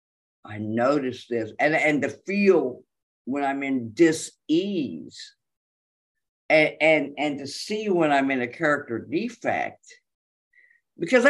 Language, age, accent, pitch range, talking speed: English, 50-69, American, 175-280 Hz, 115 wpm